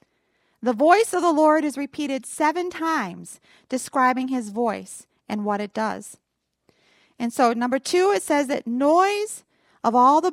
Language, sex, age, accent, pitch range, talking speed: English, female, 40-59, American, 245-355 Hz, 155 wpm